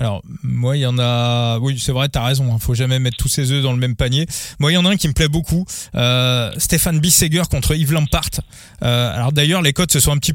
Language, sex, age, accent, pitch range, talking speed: French, male, 20-39, French, 130-155 Hz, 285 wpm